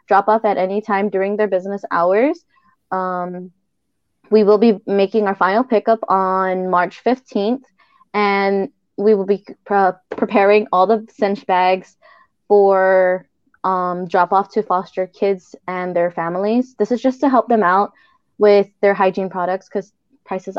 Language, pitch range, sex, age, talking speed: English, 190-225 Hz, female, 20-39, 150 wpm